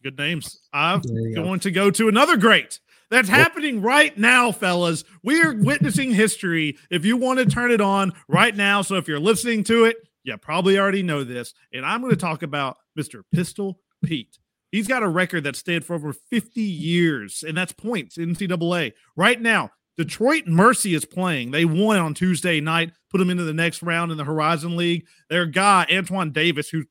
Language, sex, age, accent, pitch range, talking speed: English, male, 40-59, American, 155-210 Hz, 195 wpm